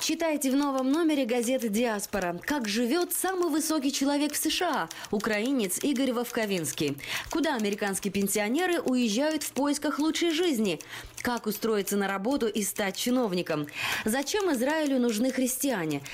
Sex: female